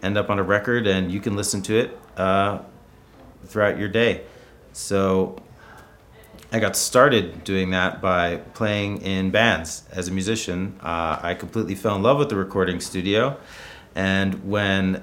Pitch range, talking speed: 85-105 Hz, 160 wpm